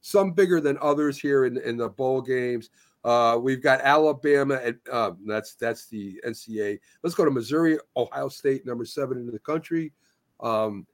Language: English